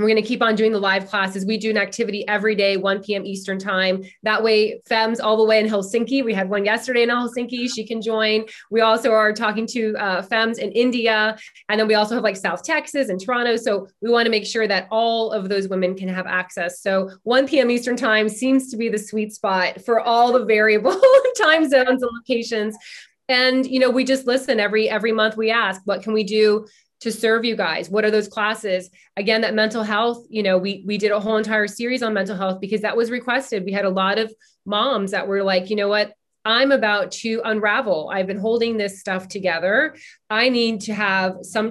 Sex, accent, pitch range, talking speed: female, American, 205-235 Hz, 225 wpm